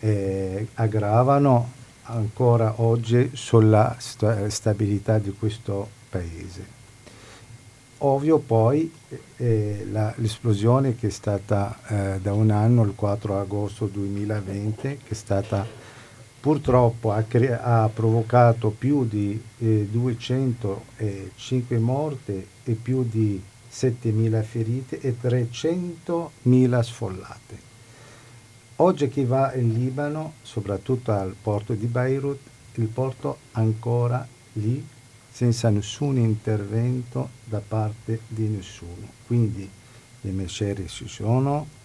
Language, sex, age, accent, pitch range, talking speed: Italian, male, 50-69, native, 105-125 Hz, 100 wpm